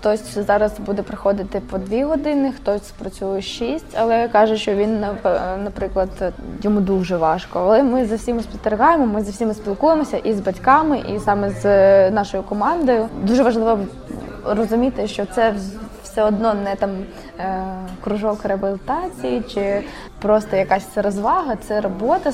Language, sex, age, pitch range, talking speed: Ukrainian, female, 20-39, 195-220 Hz, 140 wpm